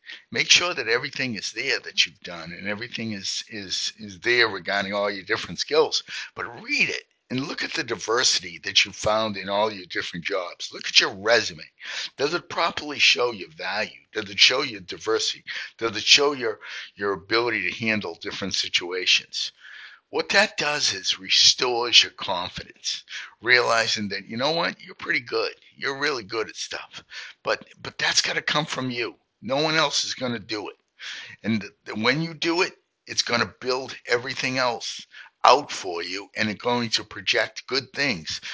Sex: male